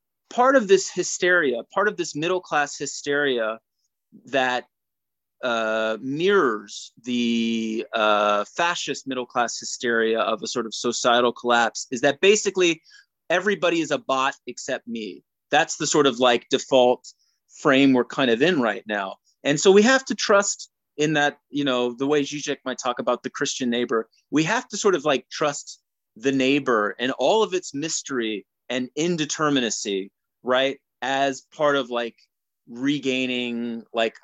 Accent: American